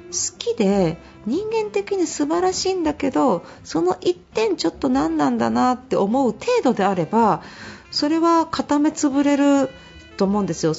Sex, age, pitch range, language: female, 40-59, 190-285 Hz, Japanese